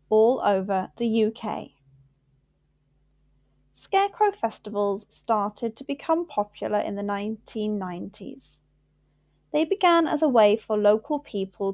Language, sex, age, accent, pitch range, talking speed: English, female, 10-29, British, 200-270 Hz, 105 wpm